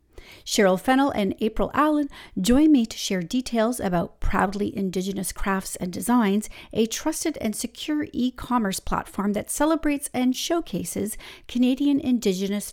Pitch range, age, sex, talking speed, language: 195-275 Hz, 40-59, female, 130 wpm, English